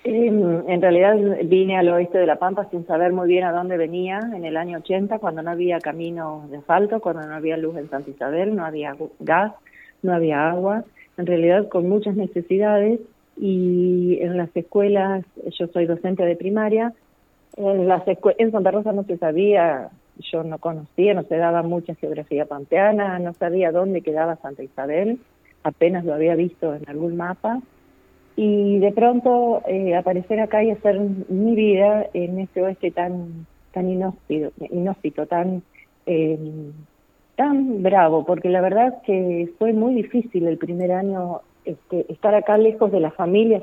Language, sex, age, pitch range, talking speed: Spanish, female, 40-59, 165-205 Hz, 170 wpm